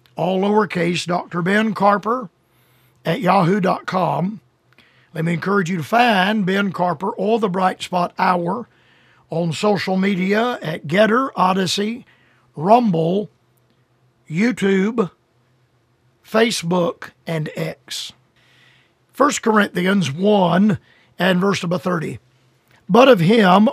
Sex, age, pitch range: male, 50-69, 160-210 Hz